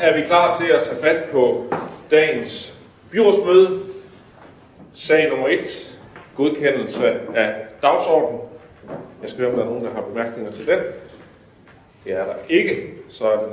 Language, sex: Danish, male